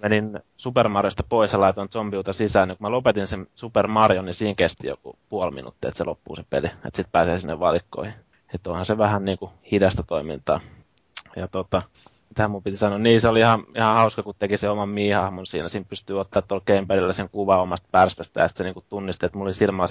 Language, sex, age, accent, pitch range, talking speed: Finnish, male, 20-39, native, 95-105 Hz, 215 wpm